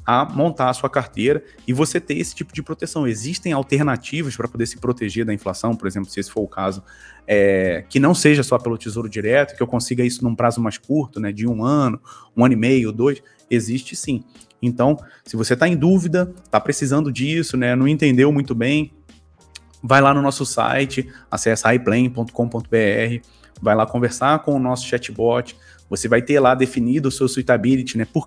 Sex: male